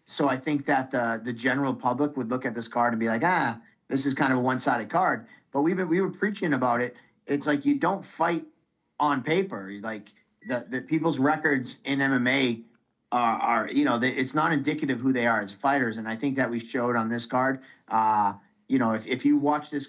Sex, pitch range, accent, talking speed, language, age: male, 120-150 Hz, American, 230 wpm, English, 40-59